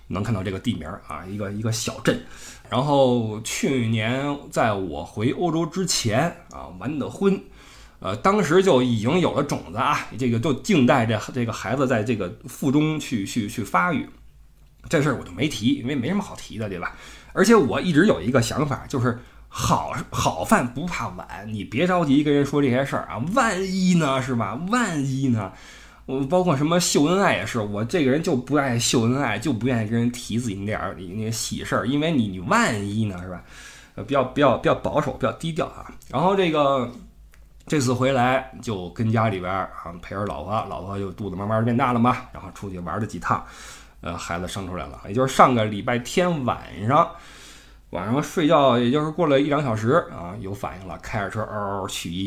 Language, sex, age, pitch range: Chinese, male, 20-39, 105-140 Hz